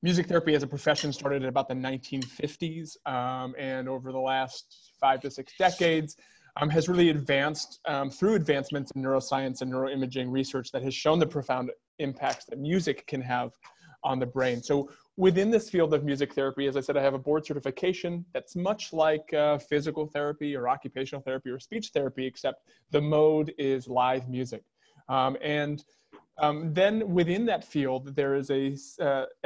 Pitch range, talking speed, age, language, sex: 130-155 Hz, 180 wpm, 30-49, English, male